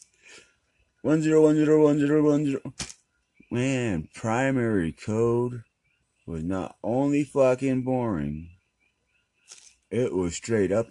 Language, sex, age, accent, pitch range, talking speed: English, male, 30-49, American, 90-125 Hz, 110 wpm